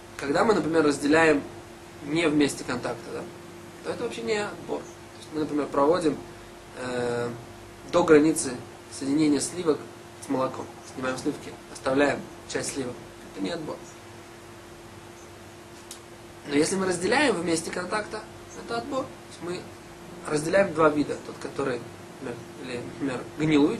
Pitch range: 130-175 Hz